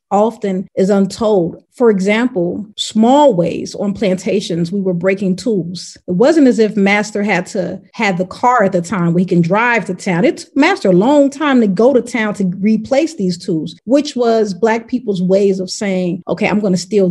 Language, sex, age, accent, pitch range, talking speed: English, female, 30-49, American, 185-225 Hz, 205 wpm